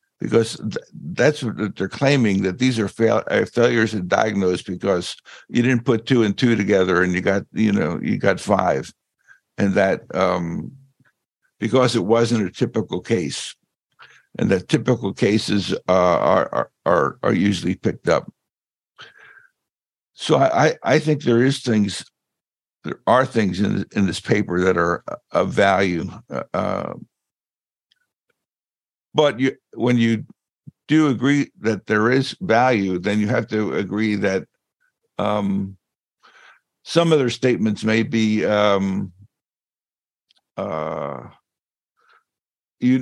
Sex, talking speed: male, 130 wpm